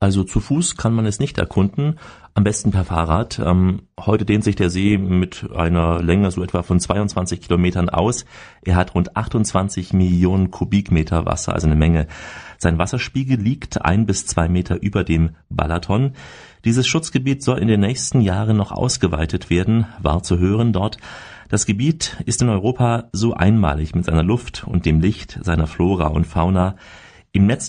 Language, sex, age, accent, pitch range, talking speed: German, male, 40-59, German, 85-110 Hz, 175 wpm